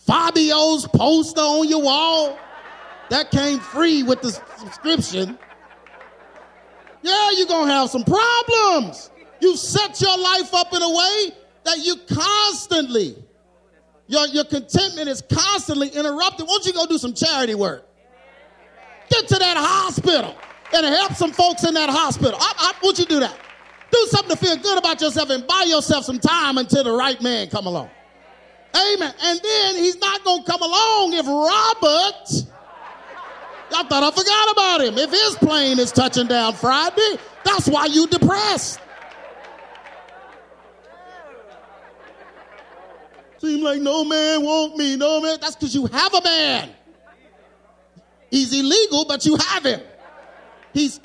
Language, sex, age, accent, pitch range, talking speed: English, male, 40-59, American, 285-370 Hz, 145 wpm